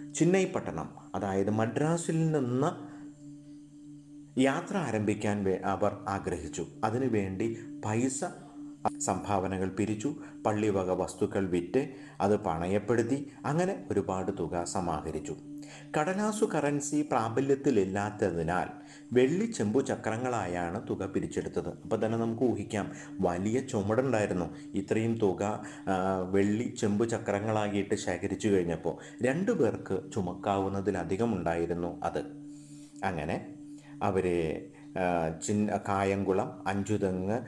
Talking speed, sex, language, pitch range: 90 wpm, male, Malayalam, 100-145 Hz